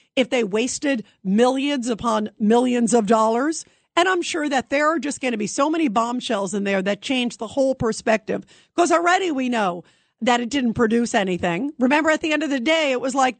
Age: 50-69